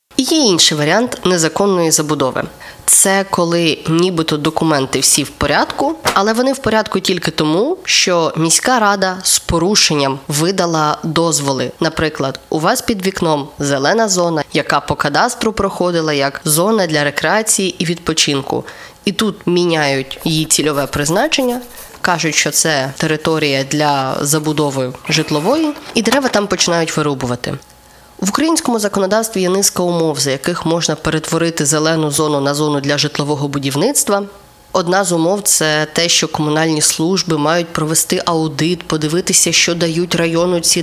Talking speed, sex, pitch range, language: 140 wpm, female, 155-185 Hz, Ukrainian